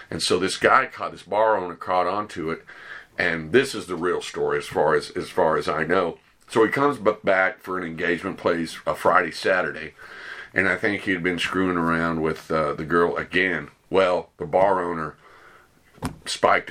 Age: 50-69